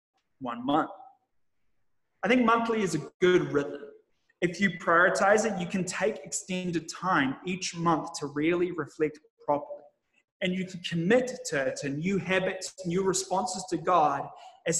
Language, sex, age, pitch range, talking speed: English, male, 20-39, 155-200 Hz, 150 wpm